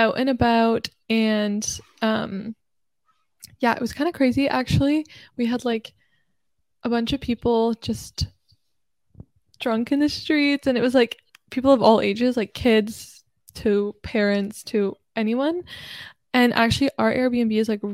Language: English